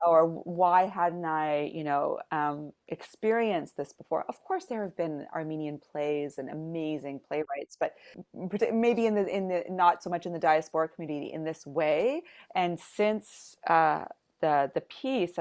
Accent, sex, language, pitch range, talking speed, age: American, female, English, 160-210 Hz, 165 wpm, 30-49